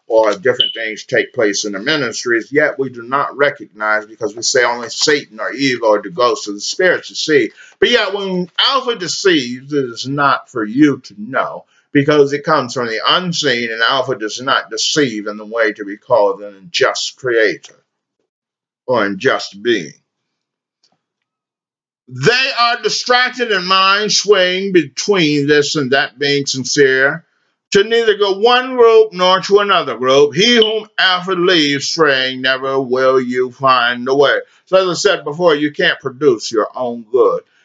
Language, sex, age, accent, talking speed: English, male, 50-69, American, 170 wpm